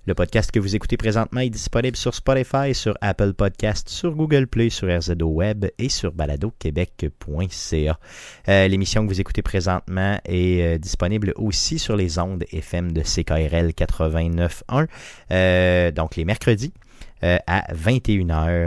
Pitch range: 85-110 Hz